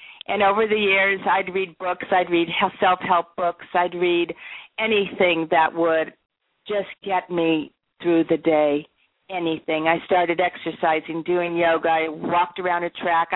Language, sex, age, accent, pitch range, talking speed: English, female, 50-69, American, 165-195 Hz, 150 wpm